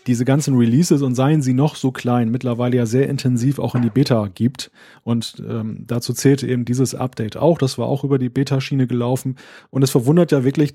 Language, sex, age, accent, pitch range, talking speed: German, male, 30-49, German, 125-145 Hz, 210 wpm